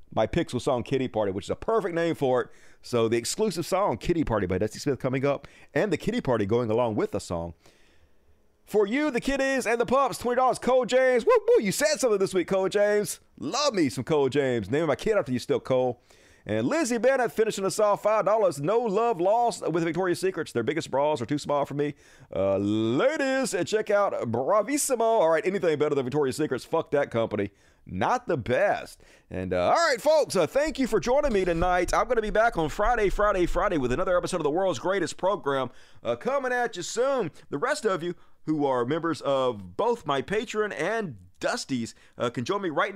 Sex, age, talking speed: male, 40-59, 215 wpm